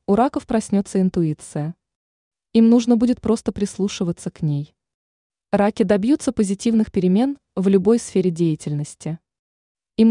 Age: 20-39